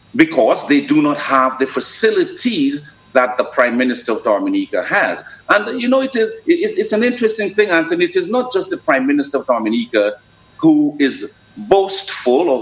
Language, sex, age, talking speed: English, male, 50-69, 180 wpm